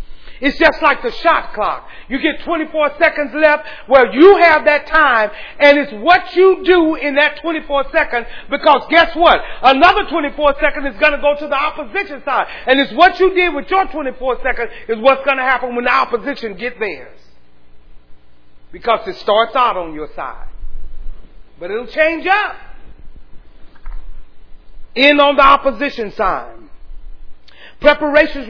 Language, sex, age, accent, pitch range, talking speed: English, male, 40-59, American, 185-295 Hz, 160 wpm